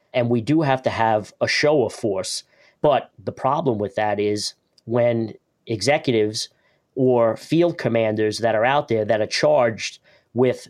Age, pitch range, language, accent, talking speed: 40-59, 110-130 Hz, English, American, 165 wpm